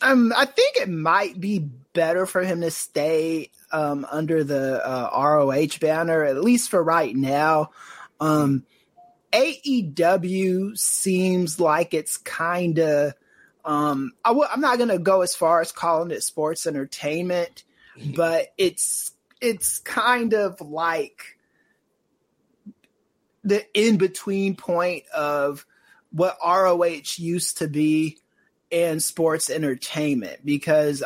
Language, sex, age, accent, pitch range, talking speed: English, male, 30-49, American, 145-190 Hz, 115 wpm